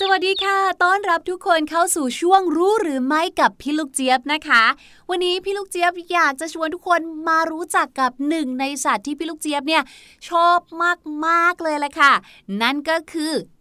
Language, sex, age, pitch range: Thai, female, 20-39, 260-335 Hz